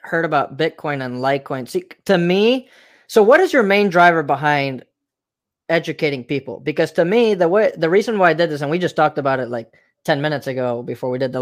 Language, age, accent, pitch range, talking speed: English, 20-39, American, 145-175 Hz, 220 wpm